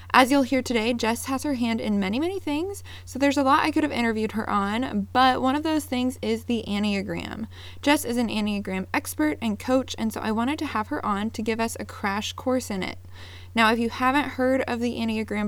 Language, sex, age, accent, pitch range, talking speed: English, female, 20-39, American, 210-260 Hz, 235 wpm